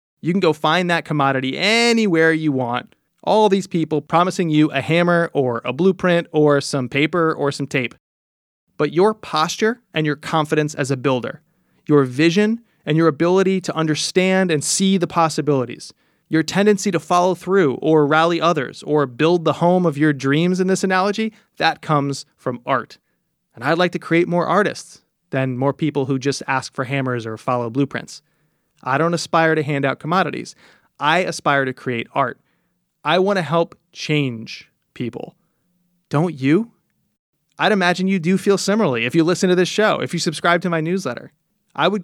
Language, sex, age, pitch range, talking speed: English, male, 30-49, 140-175 Hz, 180 wpm